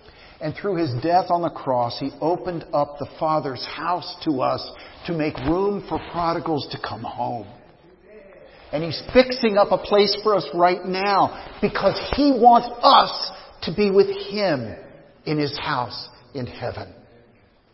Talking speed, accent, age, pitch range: 155 wpm, American, 50-69, 125-190 Hz